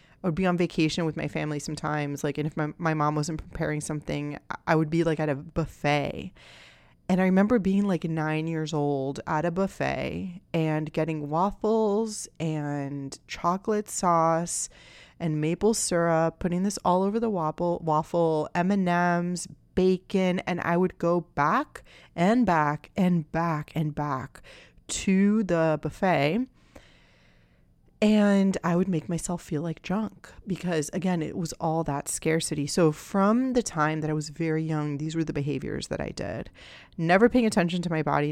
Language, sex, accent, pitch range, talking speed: English, female, American, 150-185 Hz, 170 wpm